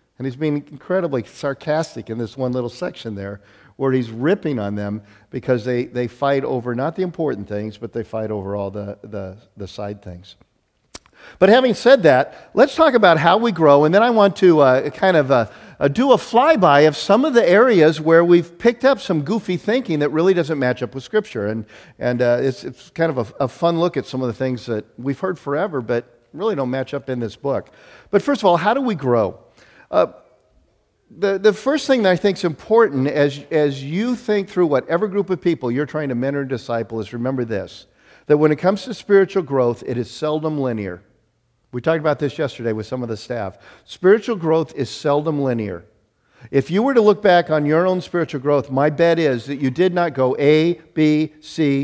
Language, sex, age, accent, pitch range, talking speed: English, male, 50-69, American, 120-175 Hz, 220 wpm